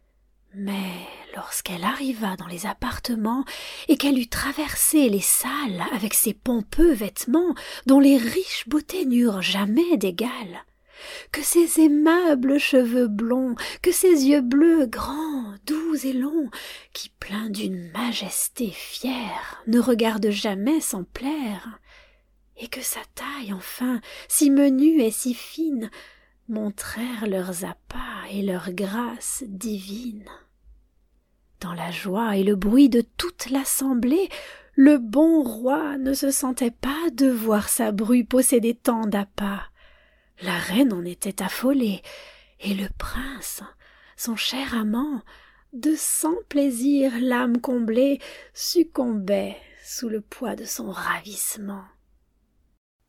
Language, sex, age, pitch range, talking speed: French, female, 30-49, 205-280 Hz, 125 wpm